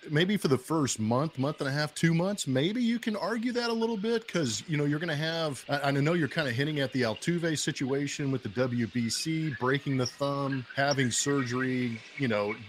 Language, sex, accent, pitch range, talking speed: English, male, American, 120-145 Hz, 220 wpm